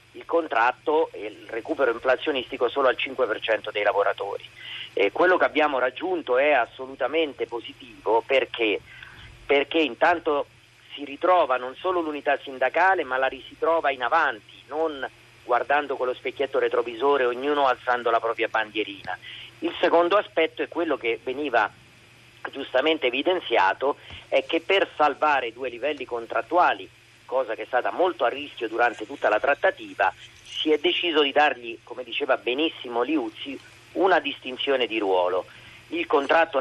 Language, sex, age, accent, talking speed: Italian, male, 40-59, native, 145 wpm